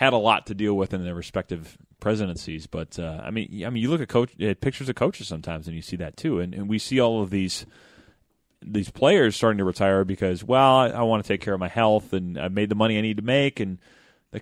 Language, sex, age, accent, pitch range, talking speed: English, male, 30-49, American, 90-110 Hz, 265 wpm